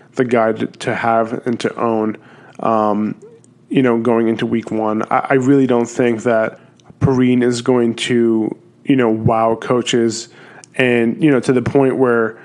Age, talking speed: 20-39, 170 wpm